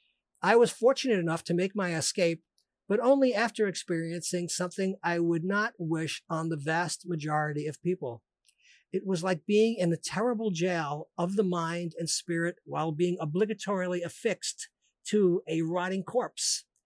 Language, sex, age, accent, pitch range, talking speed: English, male, 50-69, American, 160-210 Hz, 155 wpm